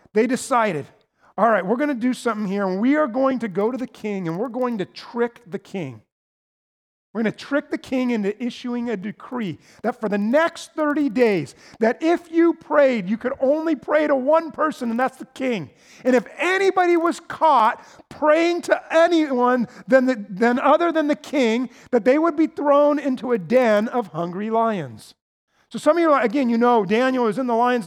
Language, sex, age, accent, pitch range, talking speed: English, male, 40-59, American, 195-260 Hz, 205 wpm